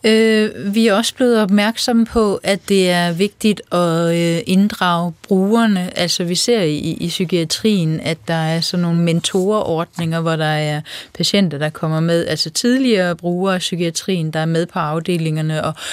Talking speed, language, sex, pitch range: 160 wpm, Danish, female, 170-205 Hz